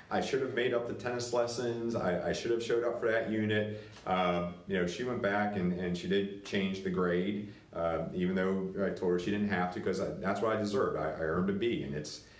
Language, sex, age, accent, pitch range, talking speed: English, male, 40-59, American, 90-110 Hz, 255 wpm